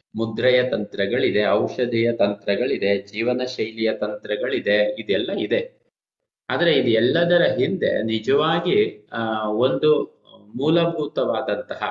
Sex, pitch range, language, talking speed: male, 115-145 Hz, Kannada, 80 wpm